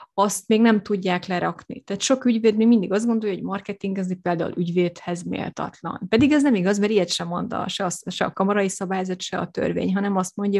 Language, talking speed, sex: Hungarian, 220 wpm, female